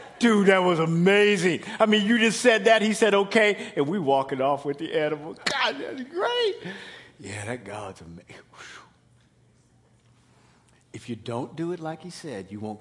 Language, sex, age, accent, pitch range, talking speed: English, male, 50-69, American, 115-185 Hz, 175 wpm